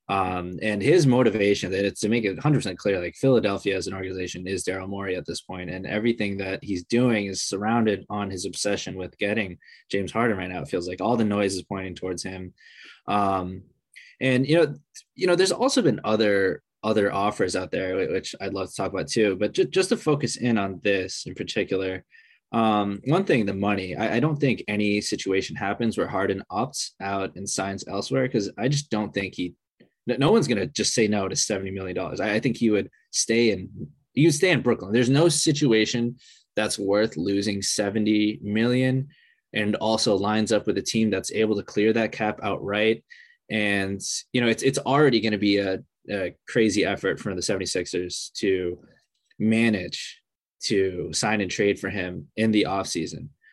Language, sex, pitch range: English, male, 95-120 Hz